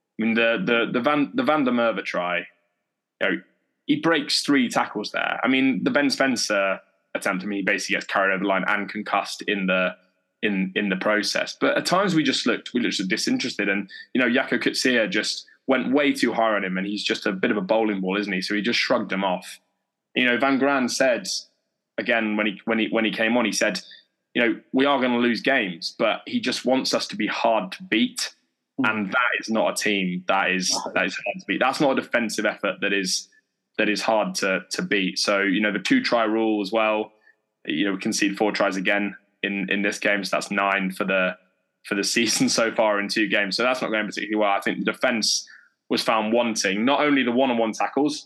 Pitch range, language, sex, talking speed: 100-125 Hz, English, male, 240 wpm